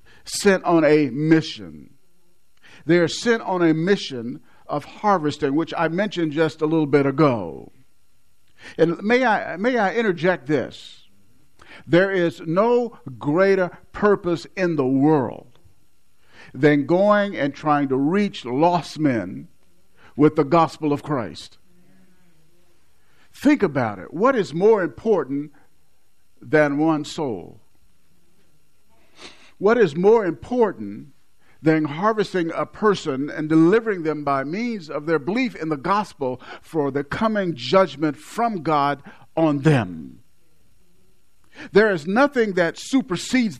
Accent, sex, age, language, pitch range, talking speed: American, male, 50-69, English, 140-195 Hz, 125 wpm